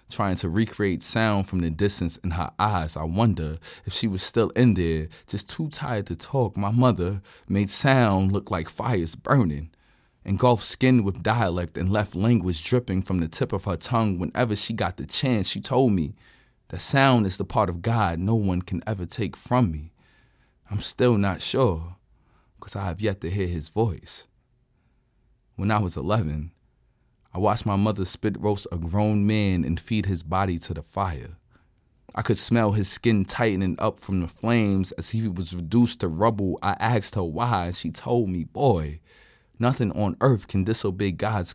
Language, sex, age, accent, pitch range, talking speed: English, male, 20-39, American, 90-115 Hz, 185 wpm